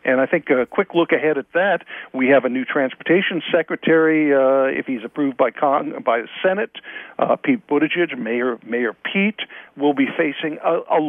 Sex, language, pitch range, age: male, English, 135-205 Hz, 50-69